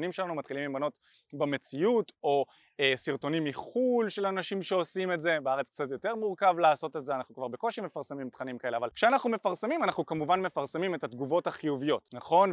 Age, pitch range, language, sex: 20-39, 140-185 Hz, Hebrew, male